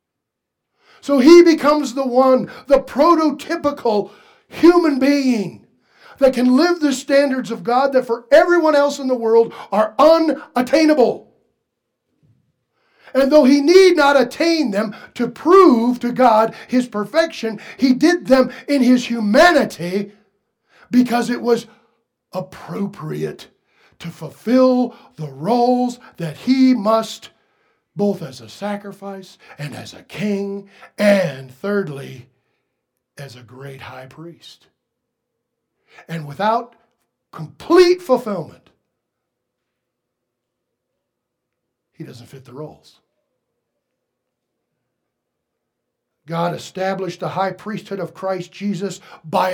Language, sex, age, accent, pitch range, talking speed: English, male, 50-69, American, 175-260 Hz, 105 wpm